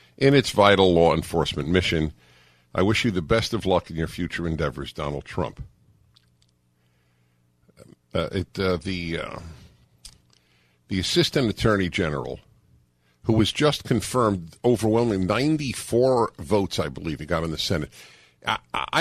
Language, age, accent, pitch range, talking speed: English, 50-69, American, 85-135 Hz, 135 wpm